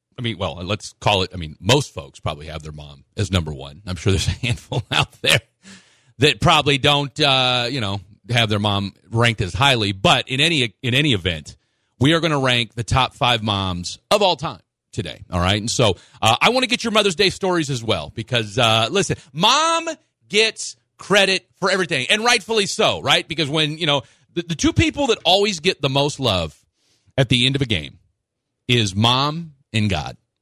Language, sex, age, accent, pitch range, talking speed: English, male, 40-59, American, 105-165 Hz, 210 wpm